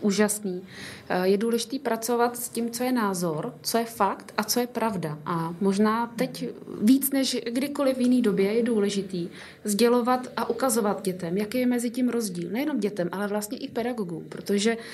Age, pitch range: 20-39, 185-220 Hz